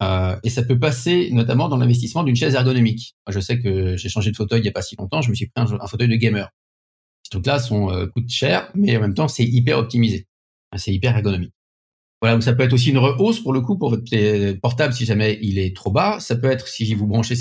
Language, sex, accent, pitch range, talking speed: French, male, French, 105-135 Hz, 250 wpm